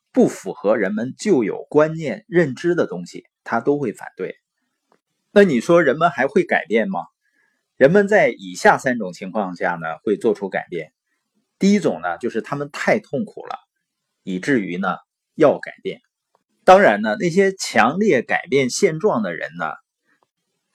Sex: male